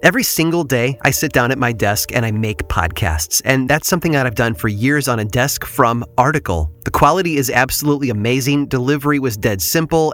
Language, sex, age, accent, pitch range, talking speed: English, male, 30-49, American, 120-145 Hz, 205 wpm